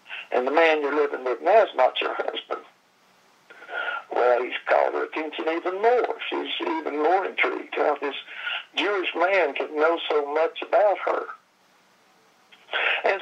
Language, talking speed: English, 150 wpm